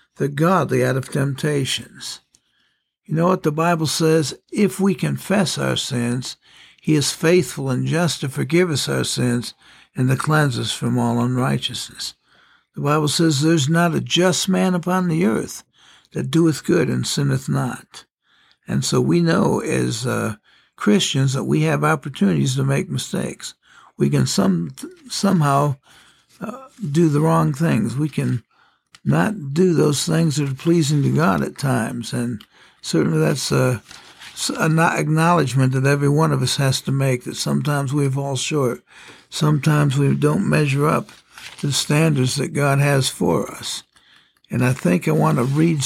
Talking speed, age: 165 wpm, 60-79